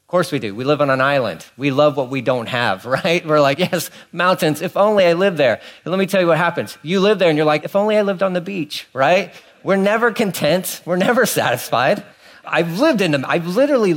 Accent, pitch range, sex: American, 125-175 Hz, male